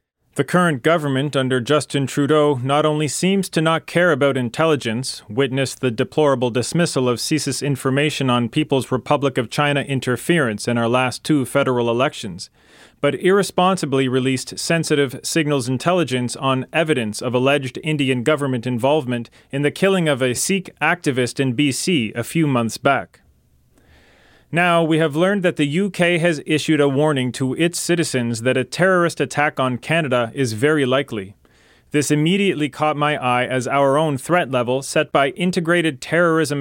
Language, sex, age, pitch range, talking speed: English, male, 40-59, 130-155 Hz, 155 wpm